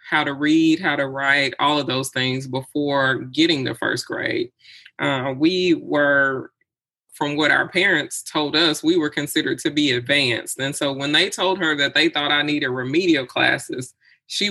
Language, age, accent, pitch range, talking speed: English, 20-39, American, 140-175 Hz, 180 wpm